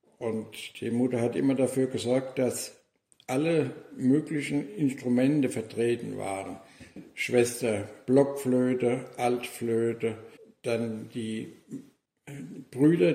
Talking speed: 85 wpm